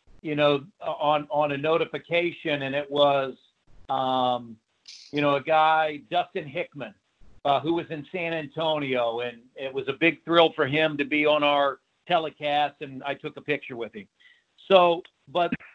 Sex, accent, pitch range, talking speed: male, American, 140-165 Hz, 170 wpm